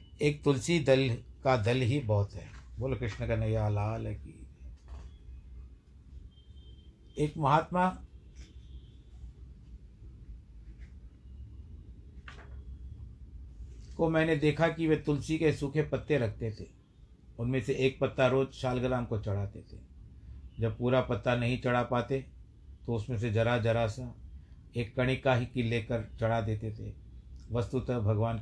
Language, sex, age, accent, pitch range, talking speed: Hindi, male, 60-79, native, 100-130 Hz, 120 wpm